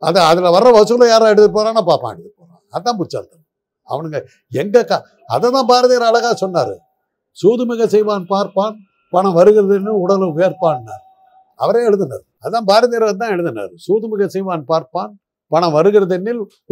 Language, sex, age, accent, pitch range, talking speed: Tamil, male, 60-79, native, 160-205 Hz, 135 wpm